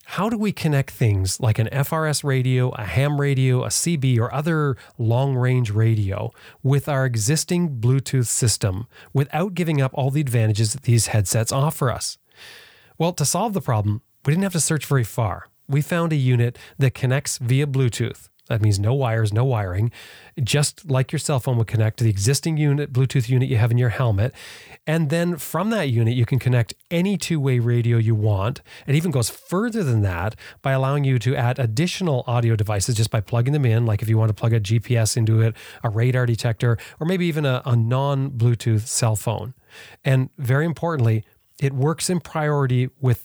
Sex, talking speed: male, 195 wpm